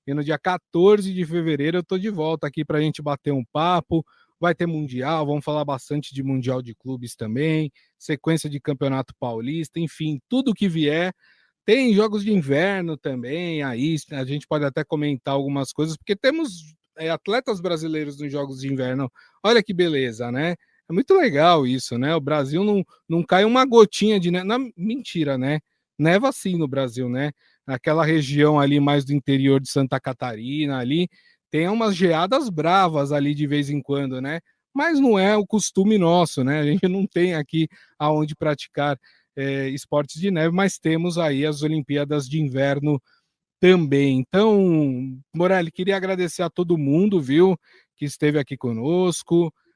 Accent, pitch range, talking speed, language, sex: Brazilian, 140-180 Hz, 170 wpm, Portuguese, male